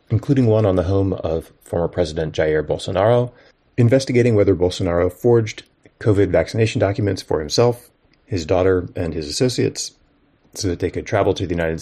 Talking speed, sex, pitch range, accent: 160 wpm, male, 90-120 Hz, American